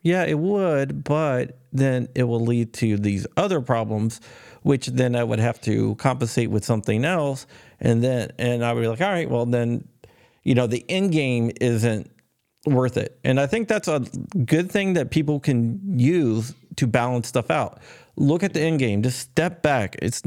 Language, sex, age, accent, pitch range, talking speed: English, male, 40-59, American, 110-135 Hz, 190 wpm